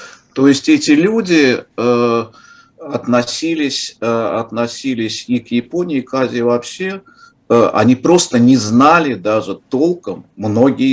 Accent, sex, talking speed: native, male, 125 wpm